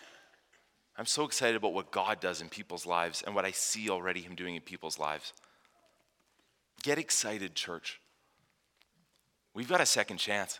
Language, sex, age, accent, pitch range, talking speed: English, male, 30-49, American, 100-130 Hz, 160 wpm